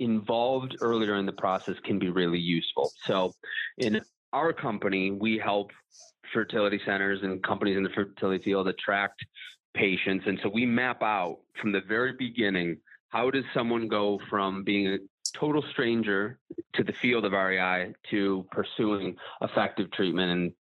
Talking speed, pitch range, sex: 155 wpm, 95-115 Hz, male